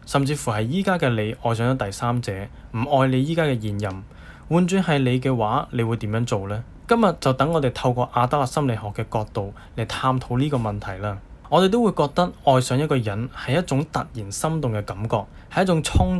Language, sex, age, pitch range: Chinese, male, 10-29, 110-150 Hz